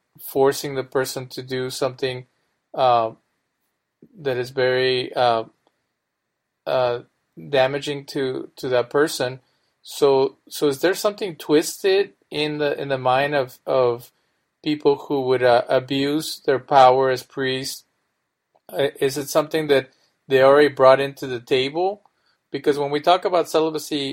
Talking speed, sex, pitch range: 135 wpm, male, 125-140 Hz